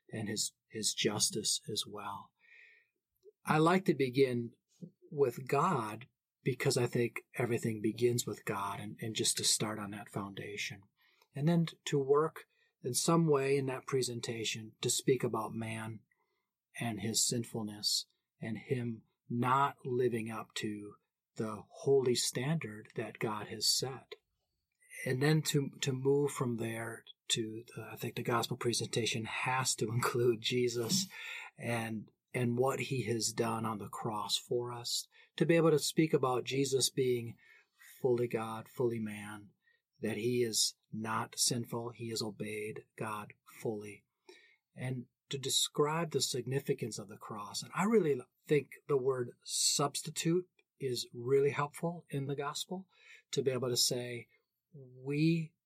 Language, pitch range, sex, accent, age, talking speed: English, 115-150 Hz, male, American, 40-59, 145 wpm